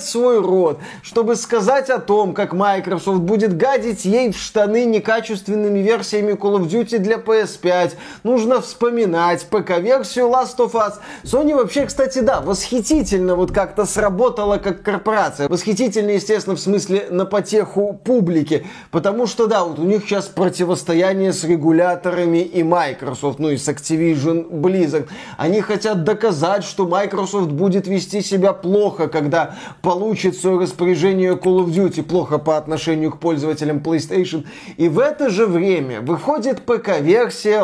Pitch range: 180-230 Hz